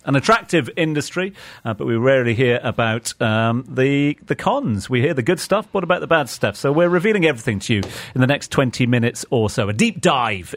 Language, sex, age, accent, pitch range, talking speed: English, male, 40-59, British, 115-175 Hz, 225 wpm